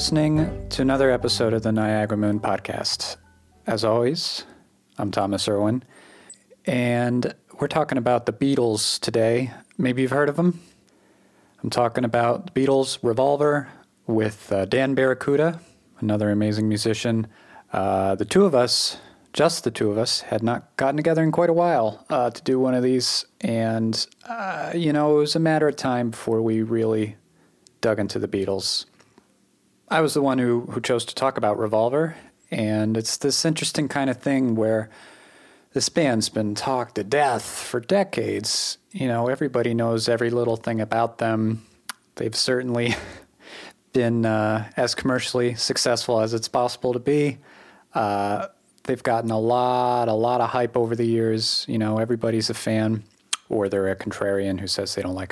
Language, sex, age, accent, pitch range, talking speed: English, male, 40-59, American, 110-130 Hz, 165 wpm